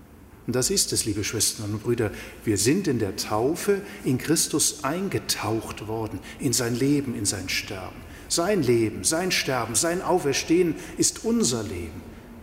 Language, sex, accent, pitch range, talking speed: German, male, German, 100-140 Hz, 155 wpm